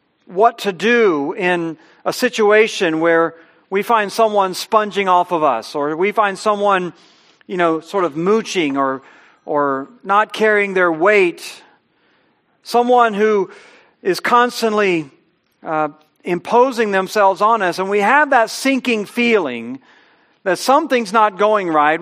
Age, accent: 50-69, American